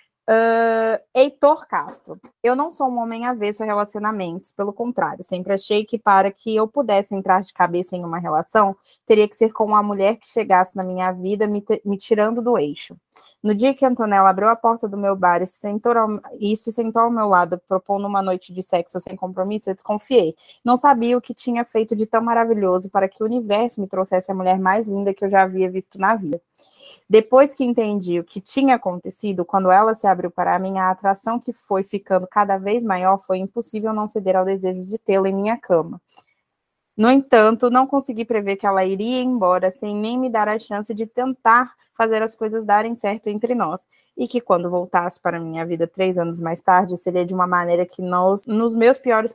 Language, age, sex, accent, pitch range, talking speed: Portuguese, 20-39, female, Brazilian, 185-230 Hz, 215 wpm